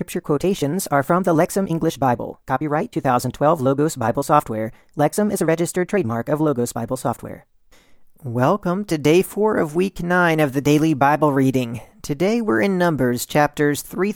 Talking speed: 170 wpm